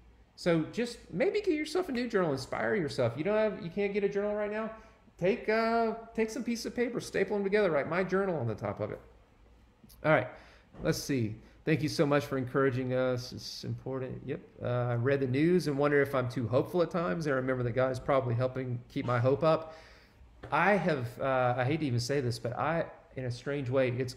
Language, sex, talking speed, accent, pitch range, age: English, male, 230 wpm, American, 120-150 Hz, 40-59